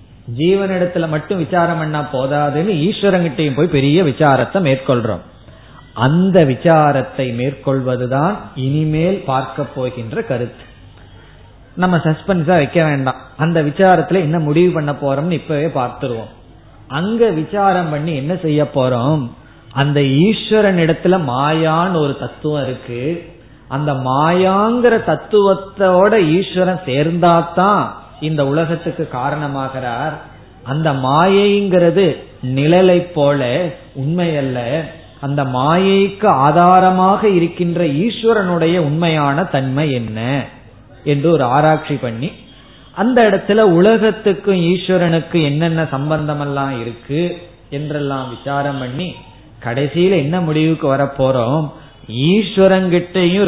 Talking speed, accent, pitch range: 95 wpm, native, 135-180 Hz